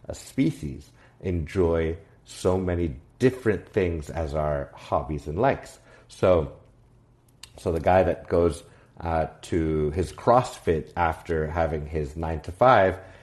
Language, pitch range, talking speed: English, 80-105 Hz, 125 wpm